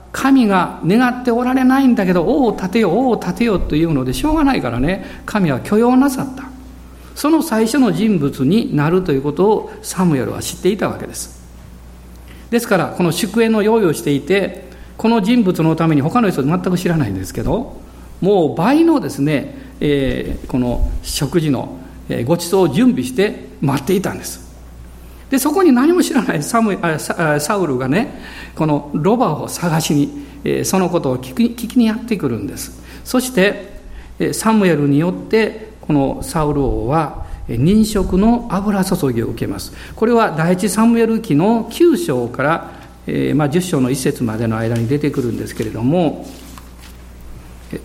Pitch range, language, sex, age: 135-225 Hz, Japanese, male, 50-69